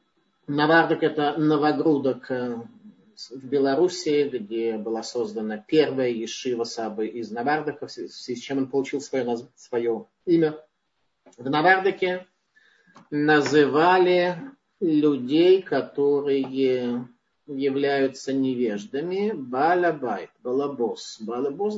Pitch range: 130-175 Hz